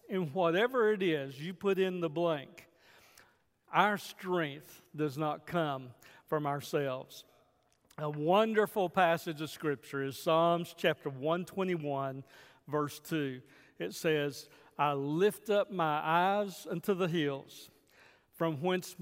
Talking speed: 125 wpm